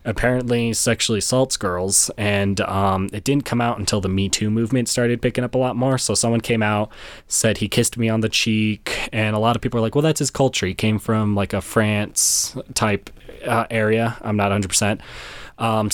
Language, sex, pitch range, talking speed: English, male, 100-115 Hz, 210 wpm